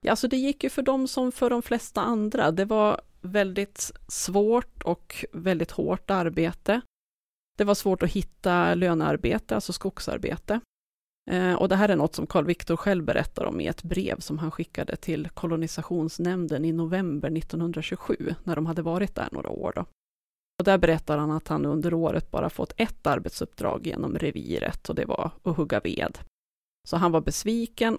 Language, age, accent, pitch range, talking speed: Swedish, 30-49, native, 165-210 Hz, 180 wpm